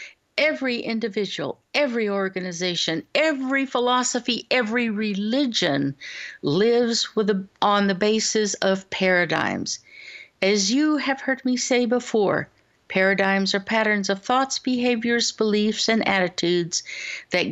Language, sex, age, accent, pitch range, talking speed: English, female, 60-79, American, 200-255 Hz, 115 wpm